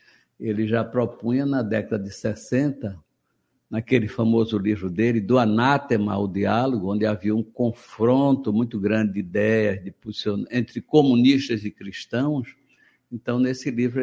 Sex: male